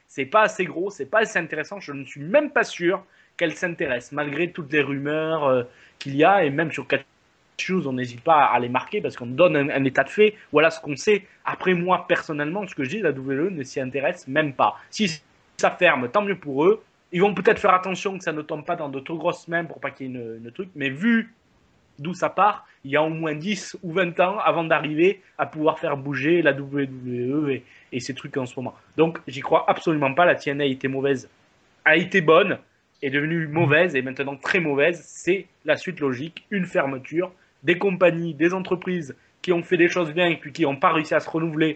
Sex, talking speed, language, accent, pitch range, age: male, 235 wpm, French, French, 140-180 Hz, 20-39